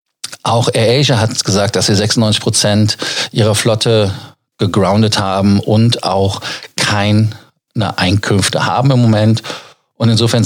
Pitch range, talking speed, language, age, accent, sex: 100-120 Hz, 125 wpm, German, 40-59, German, male